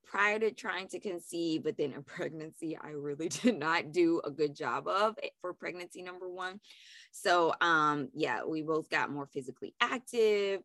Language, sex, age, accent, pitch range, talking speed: English, female, 20-39, American, 150-200 Hz, 175 wpm